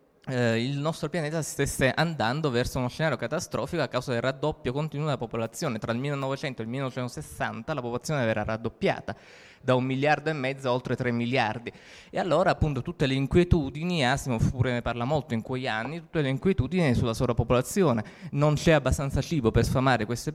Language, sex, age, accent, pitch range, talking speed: Italian, male, 20-39, native, 115-145 Hz, 180 wpm